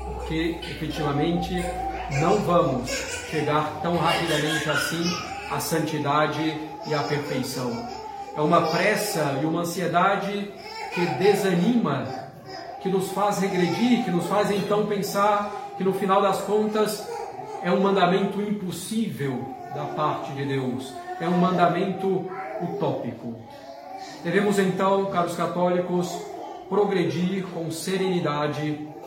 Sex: male